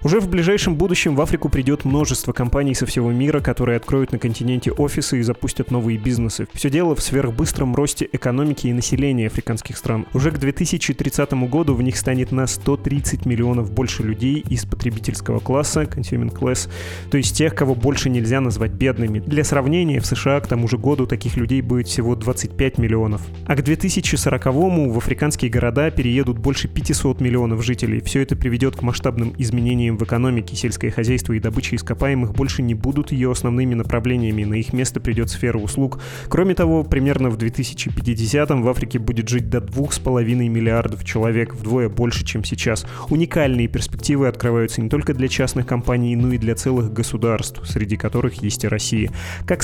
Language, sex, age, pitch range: Russian, male, 20-39, 115-135 Hz